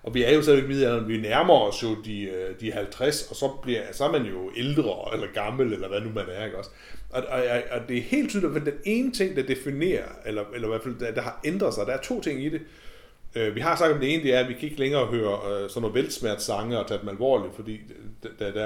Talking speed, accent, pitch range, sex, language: 255 wpm, native, 110-160 Hz, male, Danish